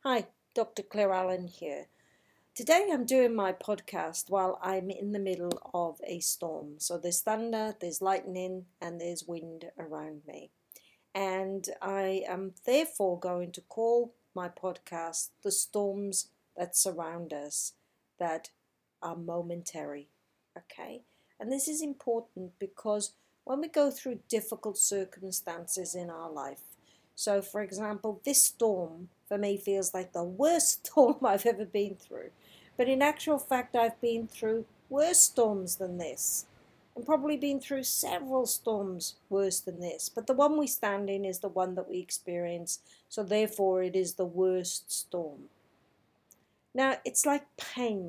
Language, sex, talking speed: English, female, 150 wpm